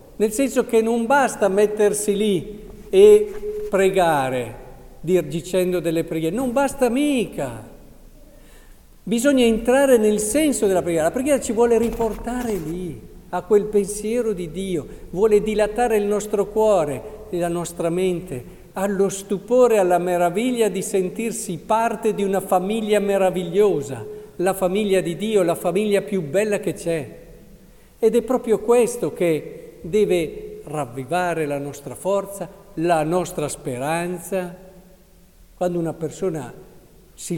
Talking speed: 125 wpm